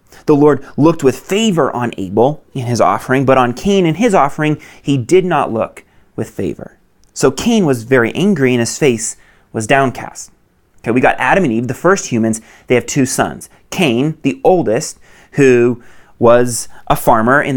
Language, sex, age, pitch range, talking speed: English, male, 30-49, 120-170 Hz, 180 wpm